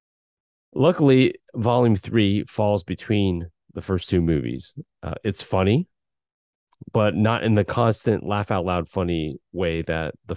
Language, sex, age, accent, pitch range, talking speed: English, male, 30-49, American, 85-115 Hz, 125 wpm